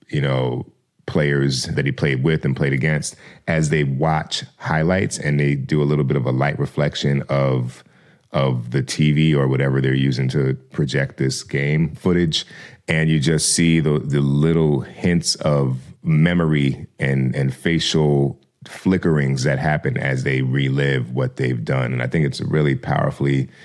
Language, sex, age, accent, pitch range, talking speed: English, male, 30-49, American, 70-80 Hz, 165 wpm